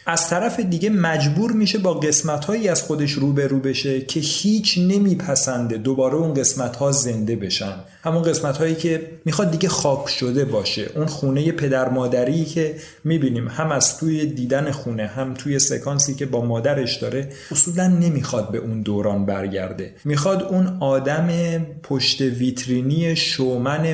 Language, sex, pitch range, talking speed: Persian, male, 125-160 Hz, 145 wpm